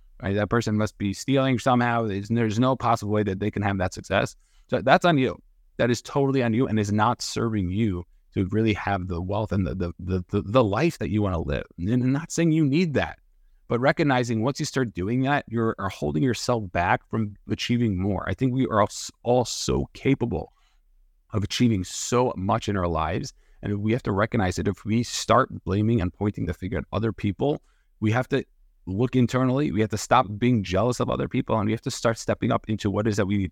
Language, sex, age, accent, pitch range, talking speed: English, male, 30-49, American, 95-120 Hz, 230 wpm